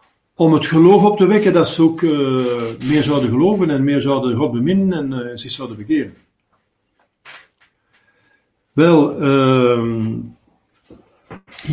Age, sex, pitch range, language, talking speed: 60-79, male, 125-180 Hz, Dutch, 130 wpm